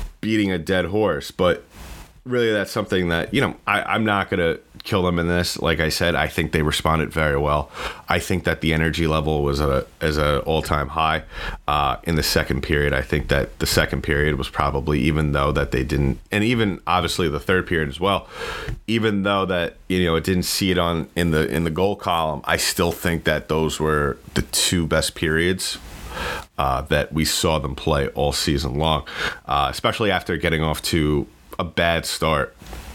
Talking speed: 200 wpm